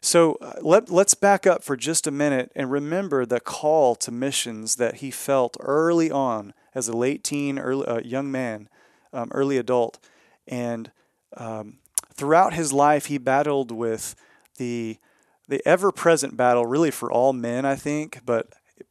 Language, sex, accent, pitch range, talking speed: English, male, American, 125-145 Hz, 165 wpm